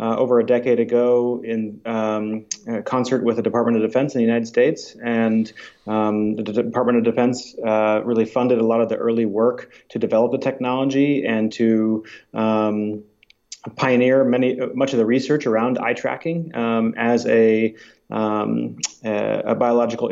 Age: 30-49